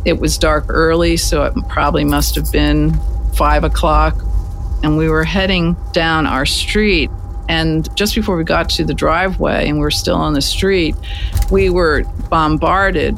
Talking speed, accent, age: 165 wpm, American, 50-69